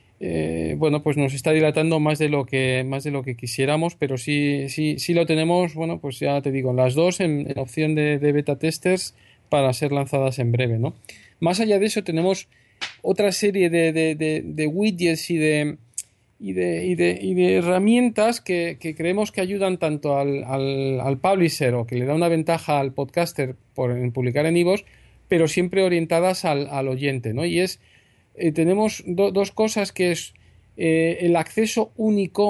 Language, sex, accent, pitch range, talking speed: Spanish, male, Spanish, 135-185 Hz, 200 wpm